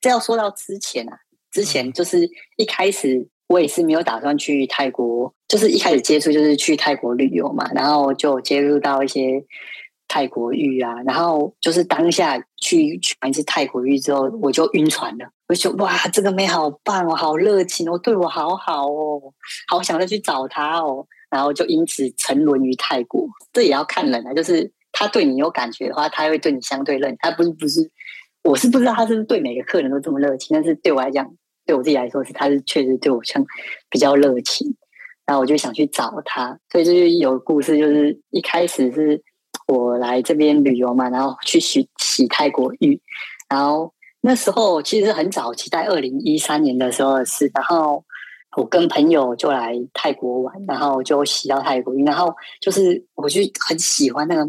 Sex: female